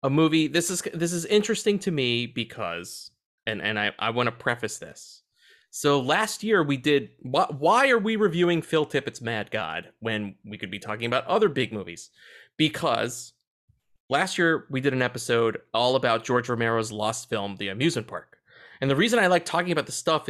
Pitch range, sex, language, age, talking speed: 120-175 Hz, male, English, 30-49, 195 wpm